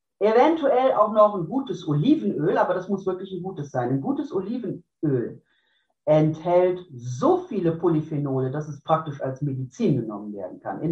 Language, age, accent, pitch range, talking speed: German, 50-69, German, 150-210 Hz, 160 wpm